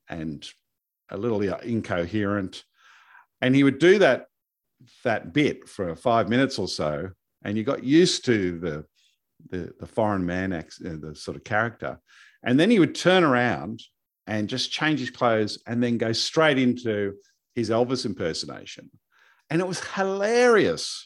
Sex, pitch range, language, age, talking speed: male, 105-140 Hz, English, 50-69, 150 wpm